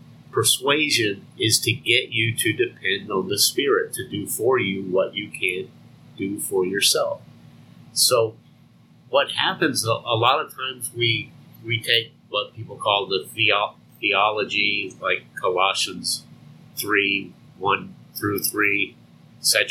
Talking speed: 130 wpm